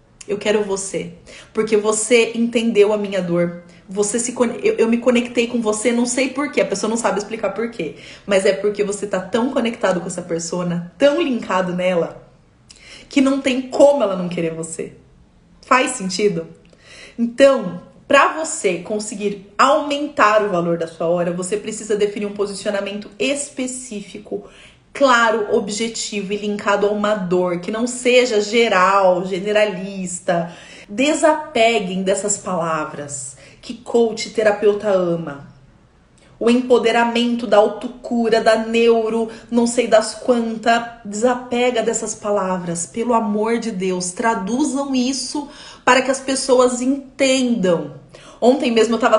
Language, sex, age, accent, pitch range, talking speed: Portuguese, female, 30-49, Brazilian, 190-240 Hz, 140 wpm